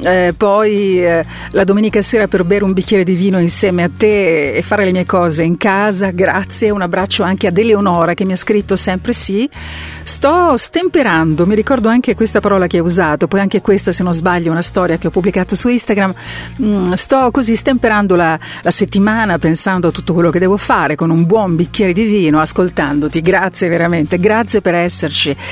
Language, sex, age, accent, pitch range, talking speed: Italian, female, 50-69, native, 175-220 Hz, 200 wpm